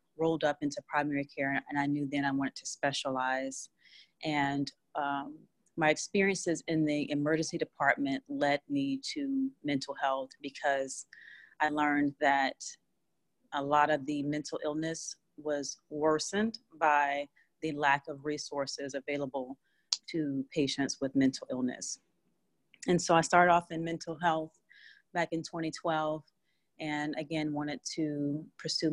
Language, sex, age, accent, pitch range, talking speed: English, female, 30-49, American, 145-165 Hz, 135 wpm